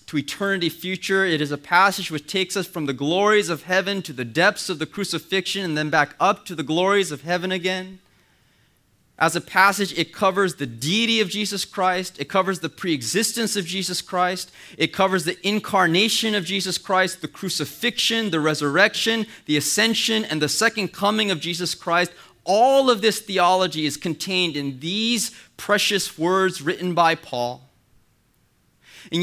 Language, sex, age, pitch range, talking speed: English, male, 30-49, 150-205 Hz, 170 wpm